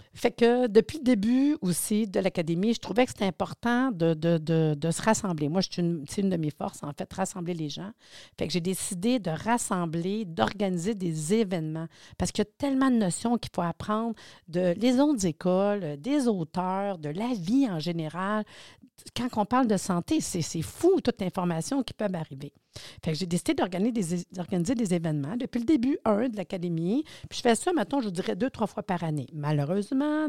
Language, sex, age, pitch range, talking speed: French, female, 50-69, 170-225 Hz, 205 wpm